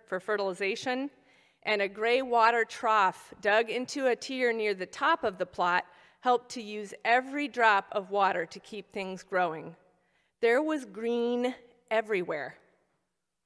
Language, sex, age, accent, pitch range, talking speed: English, female, 40-59, American, 190-240 Hz, 145 wpm